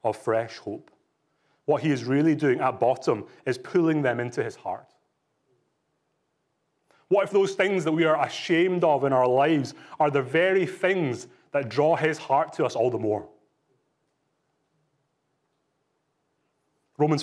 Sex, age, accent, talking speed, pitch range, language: male, 30-49, British, 145 wpm, 140-180 Hz, English